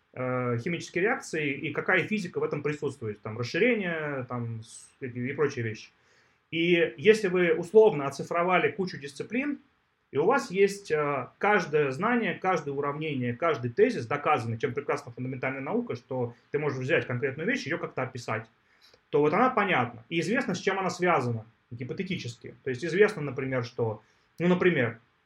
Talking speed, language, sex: 150 wpm, Russian, male